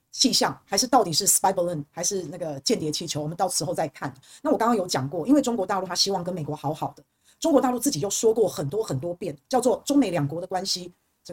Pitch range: 170-260 Hz